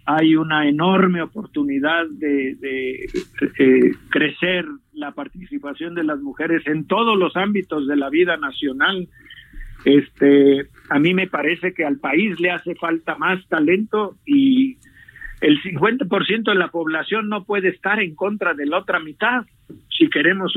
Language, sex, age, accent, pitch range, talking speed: Spanish, male, 50-69, Mexican, 150-200 Hz, 150 wpm